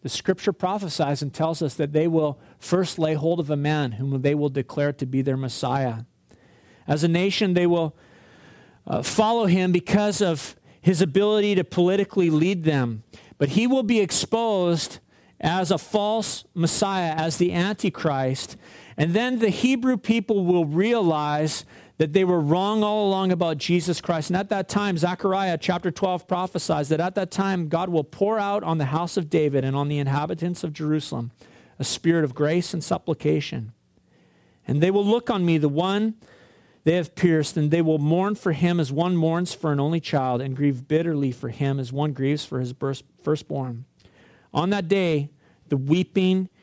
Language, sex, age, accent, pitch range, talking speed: English, male, 40-59, American, 145-185 Hz, 180 wpm